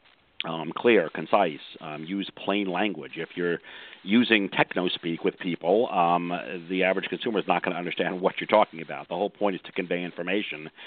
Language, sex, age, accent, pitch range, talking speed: English, male, 50-69, American, 85-105 Hz, 180 wpm